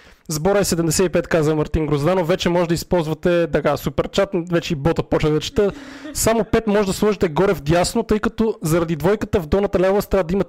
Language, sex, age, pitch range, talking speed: Bulgarian, male, 20-39, 170-200 Hz, 210 wpm